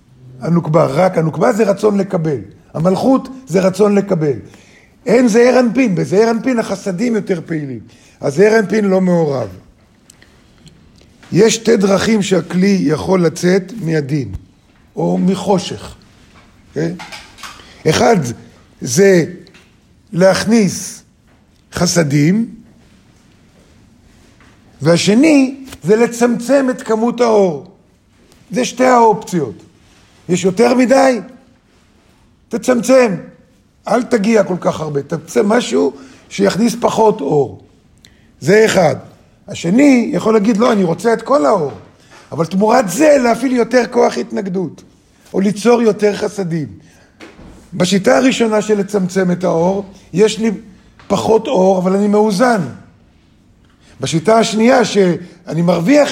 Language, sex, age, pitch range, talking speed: Hebrew, male, 50-69, 155-225 Hz, 105 wpm